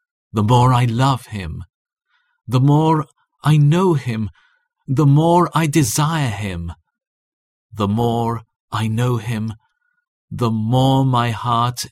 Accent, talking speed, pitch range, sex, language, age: British, 120 wpm, 105-140 Hz, male, English, 40-59